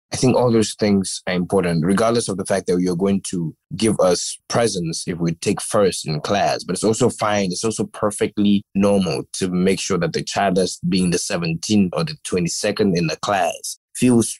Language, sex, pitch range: English, male, 85-105 Hz